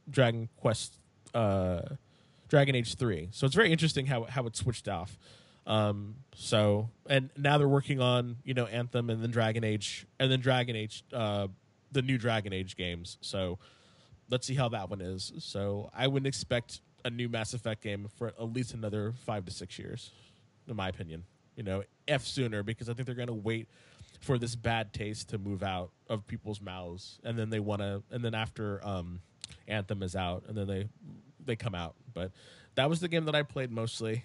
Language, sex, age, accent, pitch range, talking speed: English, male, 20-39, American, 105-130 Hz, 200 wpm